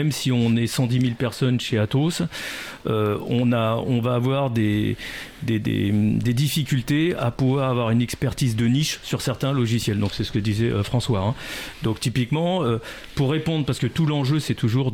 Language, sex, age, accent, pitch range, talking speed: French, male, 40-59, French, 110-135 Hz, 195 wpm